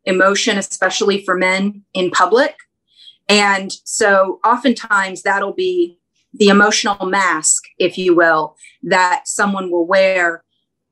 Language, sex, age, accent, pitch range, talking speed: English, female, 30-49, American, 175-220 Hz, 115 wpm